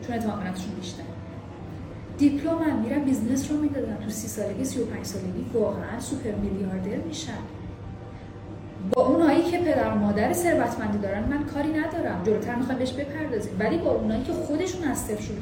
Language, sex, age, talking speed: Persian, female, 10-29, 165 wpm